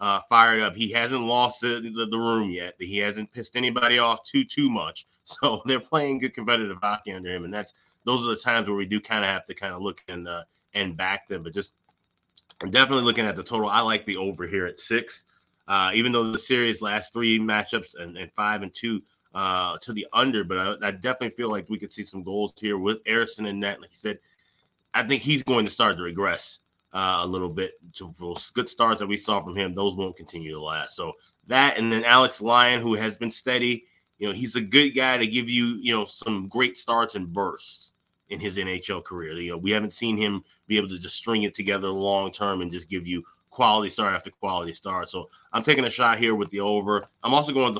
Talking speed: 240 wpm